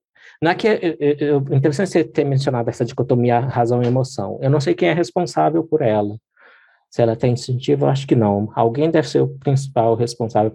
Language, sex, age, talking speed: Portuguese, male, 20-39, 205 wpm